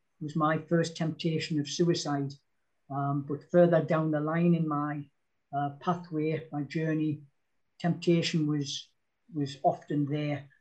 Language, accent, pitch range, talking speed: English, British, 150-175 Hz, 130 wpm